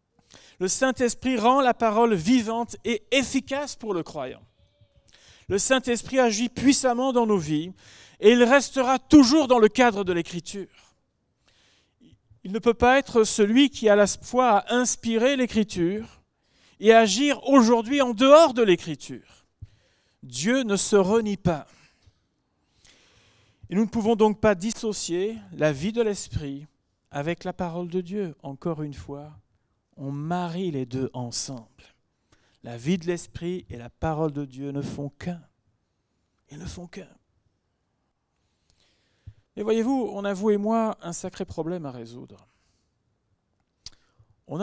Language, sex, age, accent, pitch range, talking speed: French, male, 40-59, French, 135-225 Hz, 140 wpm